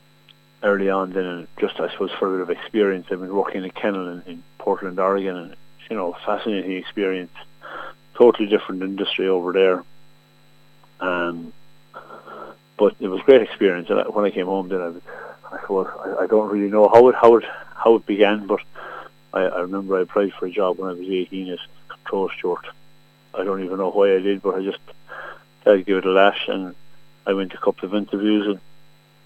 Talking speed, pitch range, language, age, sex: 200 wpm, 95-100 Hz, English, 40-59, male